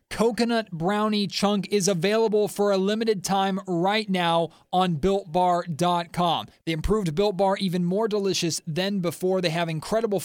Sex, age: male, 30-49